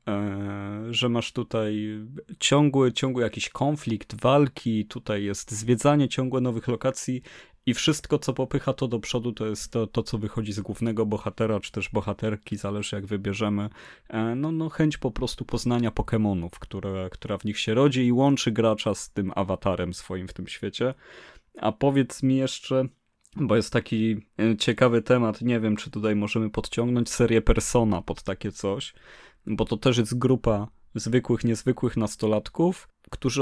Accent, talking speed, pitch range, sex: native, 155 wpm, 105-130 Hz, male